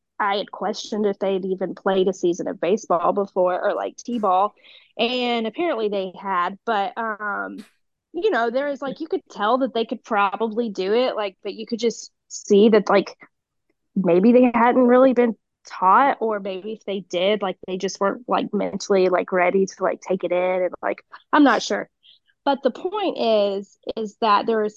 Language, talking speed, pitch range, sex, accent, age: English, 195 wpm, 195-235 Hz, female, American, 20-39